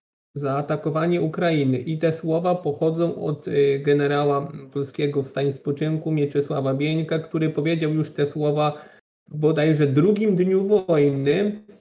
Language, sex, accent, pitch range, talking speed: Polish, male, native, 145-170 Hz, 130 wpm